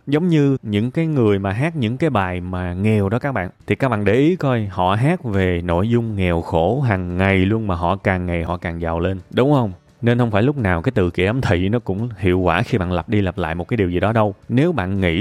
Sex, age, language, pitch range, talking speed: male, 20-39, Vietnamese, 95-125 Hz, 275 wpm